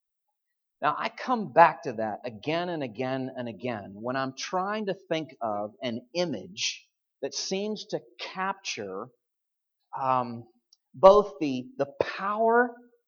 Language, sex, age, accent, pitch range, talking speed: English, male, 40-59, American, 135-210 Hz, 130 wpm